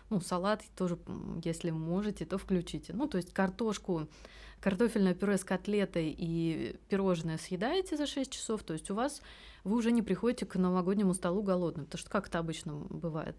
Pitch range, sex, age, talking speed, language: 175-210 Hz, female, 20-39, 170 wpm, Russian